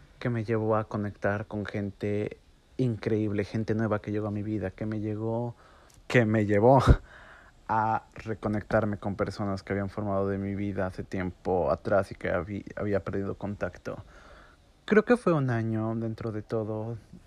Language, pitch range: Spanish, 100-115 Hz